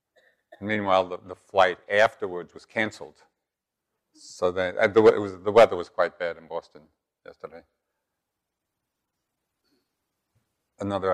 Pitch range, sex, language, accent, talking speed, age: 90-120 Hz, male, English, American, 120 wpm, 50-69